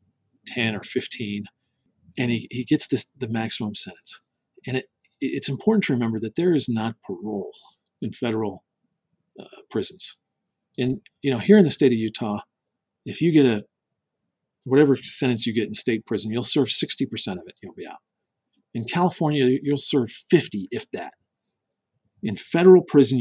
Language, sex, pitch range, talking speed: English, male, 115-145 Hz, 165 wpm